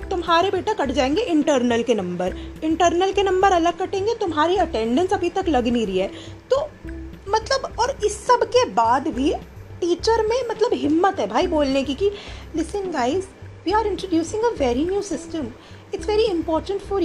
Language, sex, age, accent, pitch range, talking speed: Hindi, female, 30-49, native, 275-405 Hz, 175 wpm